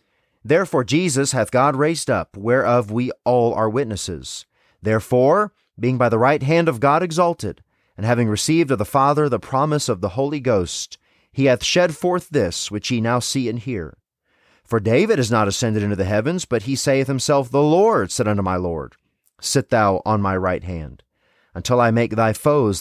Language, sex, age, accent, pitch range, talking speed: English, male, 30-49, American, 110-140 Hz, 190 wpm